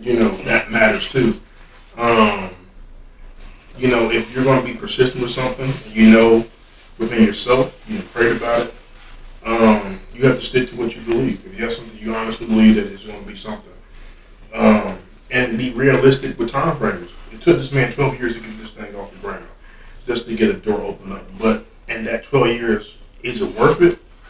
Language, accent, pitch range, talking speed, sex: English, American, 110-135 Hz, 205 wpm, male